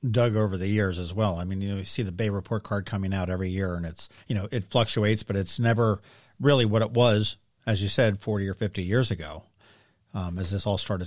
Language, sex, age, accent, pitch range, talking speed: English, male, 50-69, American, 105-125 Hz, 250 wpm